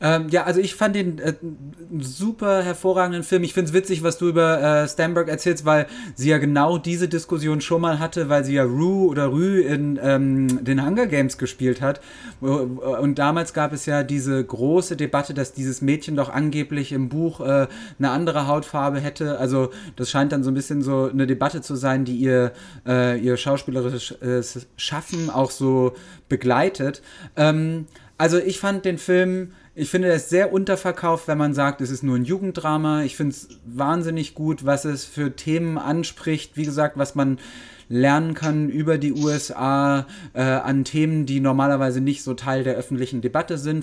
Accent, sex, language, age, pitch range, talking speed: German, male, German, 30-49, 135-160 Hz, 180 wpm